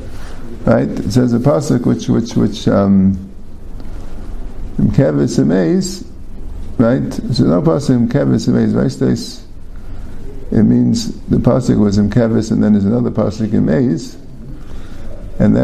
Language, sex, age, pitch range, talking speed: English, male, 50-69, 90-120 Hz, 105 wpm